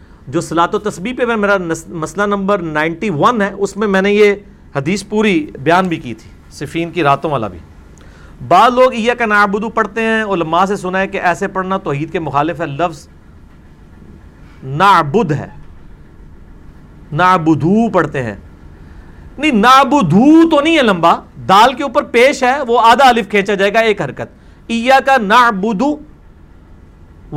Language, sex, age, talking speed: Urdu, male, 50-69, 160 wpm